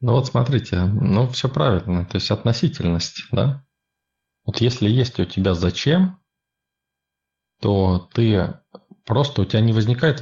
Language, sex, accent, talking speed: Russian, male, native, 135 wpm